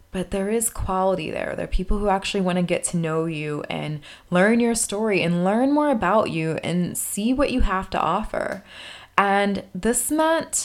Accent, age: American, 20-39